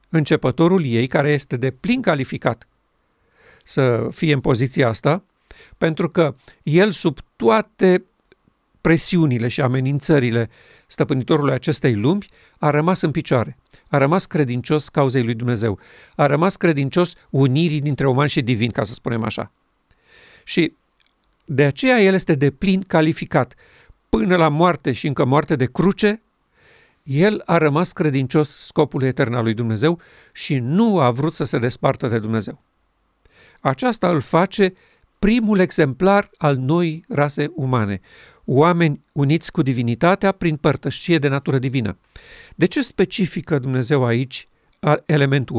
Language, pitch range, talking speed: Romanian, 130-175 Hz, 135 wpm